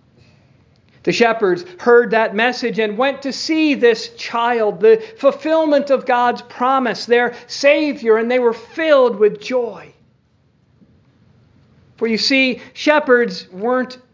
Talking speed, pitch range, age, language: 125 wpm, 170-245 Hz, 50-69, English